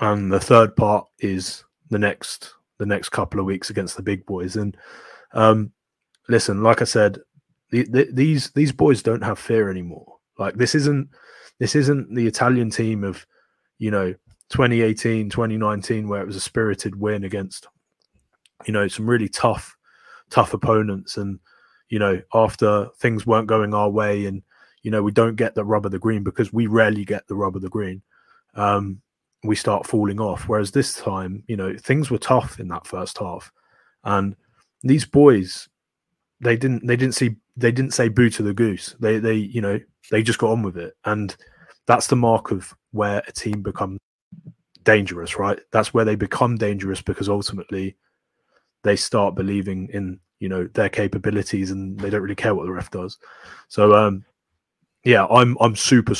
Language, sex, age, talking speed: English, male, 20-39, 180 wpm